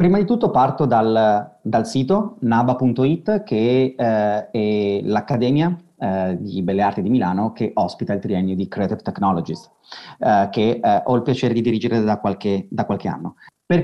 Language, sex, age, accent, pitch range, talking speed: Italian, male, 30-49, native, 115-150 Hz, 165 wpm